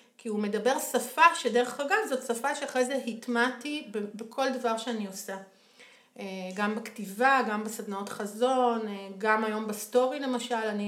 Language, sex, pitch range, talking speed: Hebrew, female, 205-255 Hz, 130 wpm